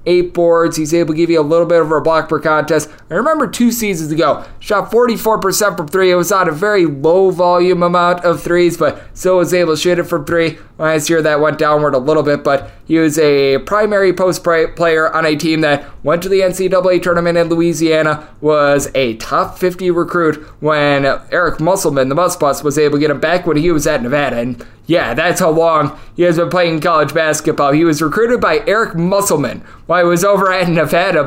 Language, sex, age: English, male, 20-39